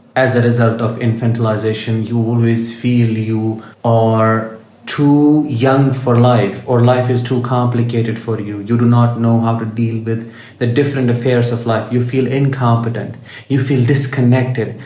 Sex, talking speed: male, 160 wpm